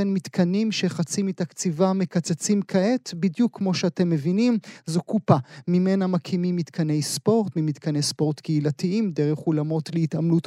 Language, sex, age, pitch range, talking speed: Hebrew, male, 30-49, 160-195 Hz, 120 wpm